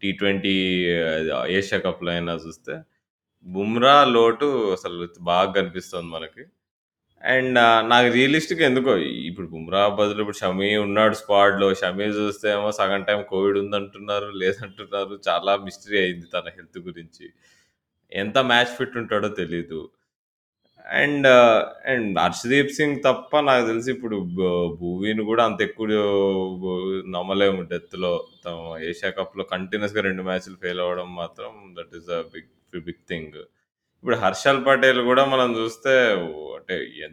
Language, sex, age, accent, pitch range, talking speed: Telugu, male, 20-39, native, 95-115 Hz, 125 wpm